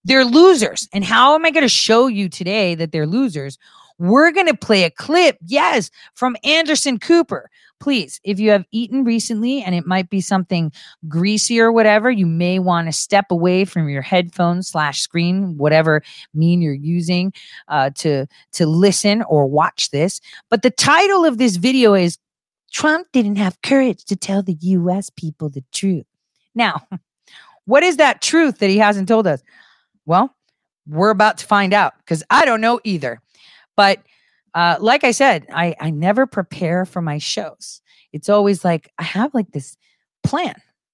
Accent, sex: American, female